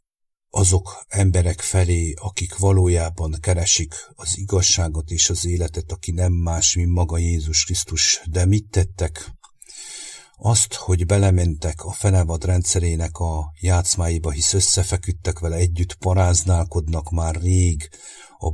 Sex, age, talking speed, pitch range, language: male, 60-79, 120 wpm, 85-95 Hz, English